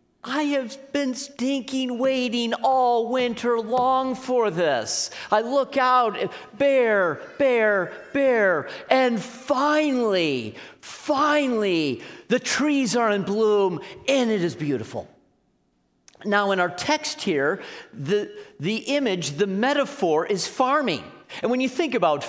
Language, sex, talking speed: English, male, 120 wpm